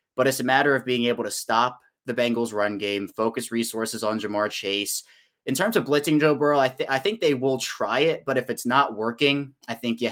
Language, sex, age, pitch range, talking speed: English, male, 20-39, 110-135 Hz, 235 wpm